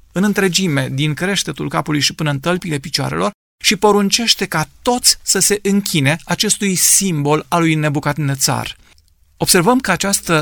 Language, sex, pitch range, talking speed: Romanian, male, 150-190 Hz, 150 wpm